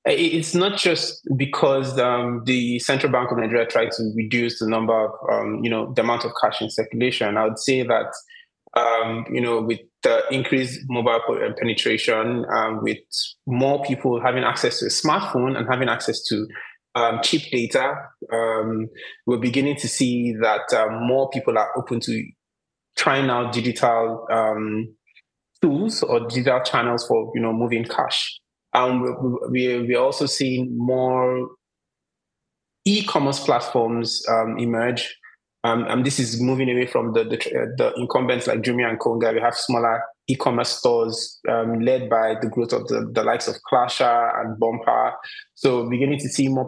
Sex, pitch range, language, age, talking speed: male, 115-130 Hz, English, 20-39, 165 wpm